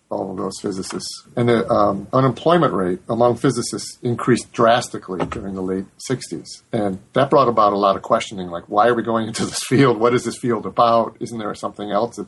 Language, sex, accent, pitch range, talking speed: English, male, American, 100-120 Hz, 210 wpm